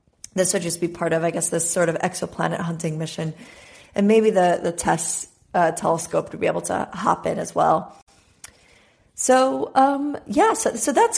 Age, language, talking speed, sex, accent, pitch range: 30-49, English, 190 wpm, female, American, 165-205 Hz